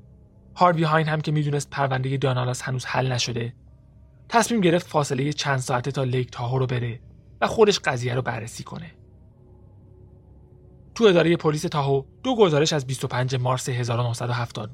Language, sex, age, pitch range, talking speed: Persian, male, 30-49, 120-155 Hz, 145 wpm